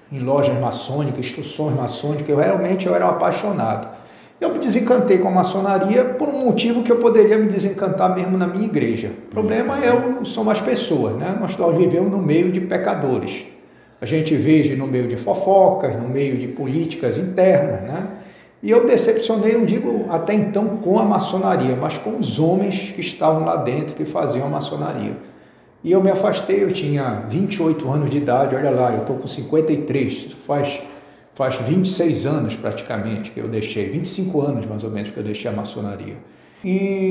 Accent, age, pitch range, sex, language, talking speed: Brazilian, 50-69, 140-195 Hz, male, Portuguese, 185 wpm